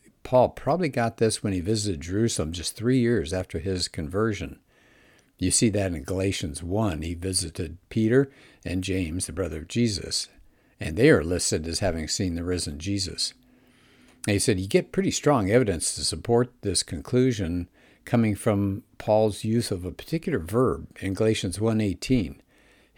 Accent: American